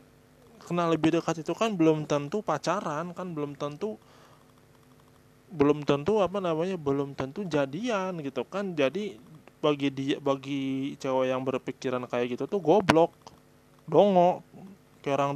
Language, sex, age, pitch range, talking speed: Indonesian, male, 20-39, 135-160 Hz, 130 wpm